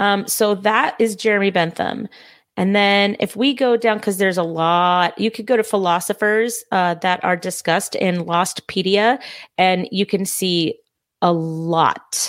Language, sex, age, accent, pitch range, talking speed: English, female, 30-49, American, 170-215 Hz, 160 wpm